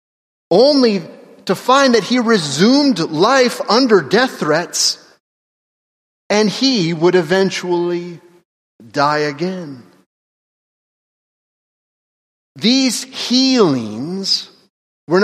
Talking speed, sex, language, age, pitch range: 75 wpm, male, English, 30-49, 150-225 Hz